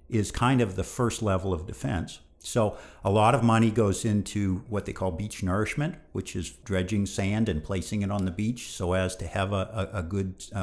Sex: male